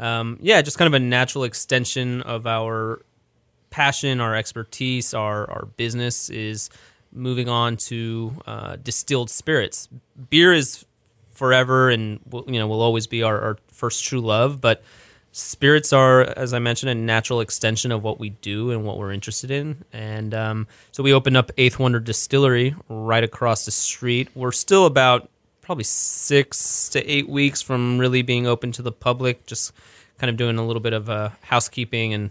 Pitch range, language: 110-130 Hz, English